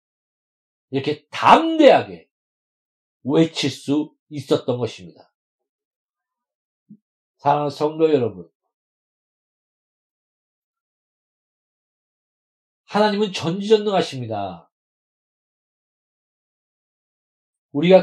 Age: 40-59